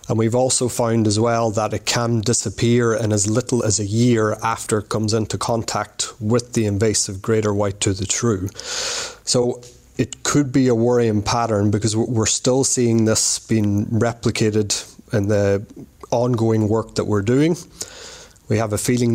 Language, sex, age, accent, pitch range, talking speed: English, male, 30-49, Irish, 110-125 Hz, 170 wpm